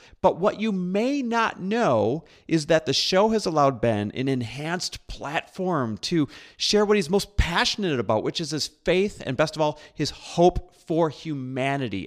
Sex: male